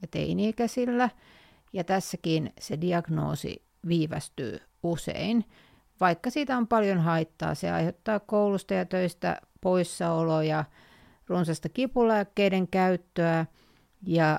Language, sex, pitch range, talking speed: Finnish, female, 155-195 Hz, 95 wpm